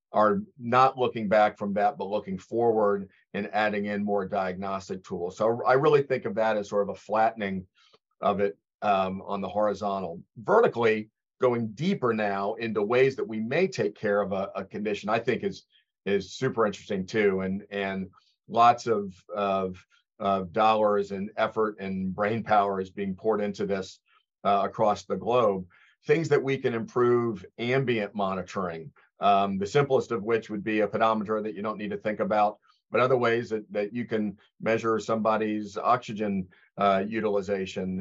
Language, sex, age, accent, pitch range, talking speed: English, male, 40-59, American, 100-115 Hz, 175 wpm